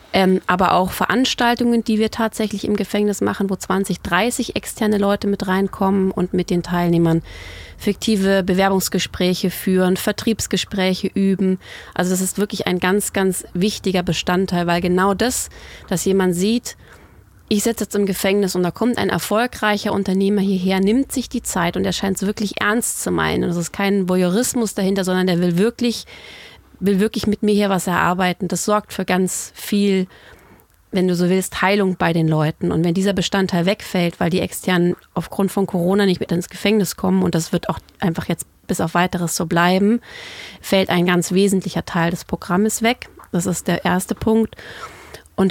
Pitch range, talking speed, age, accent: 175-205 Hz, 175 wpm, 30-49, German